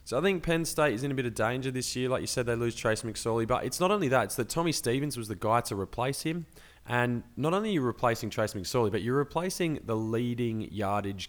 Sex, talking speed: male, 260 wpm